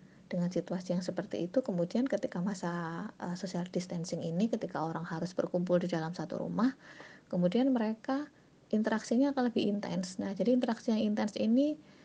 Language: Indonesian